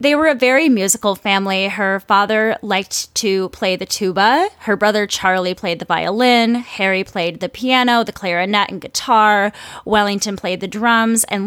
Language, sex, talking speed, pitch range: English, female, 165 wpm, 180-220 Hz